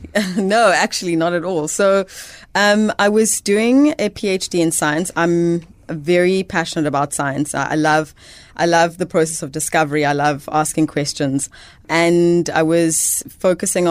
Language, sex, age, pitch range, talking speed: English, female, 20-39, 150-170 Hz, 150 wpm